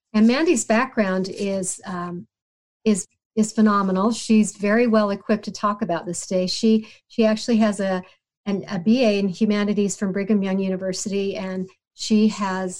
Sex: female